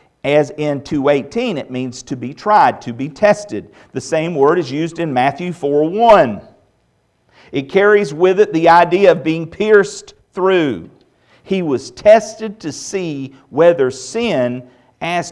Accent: American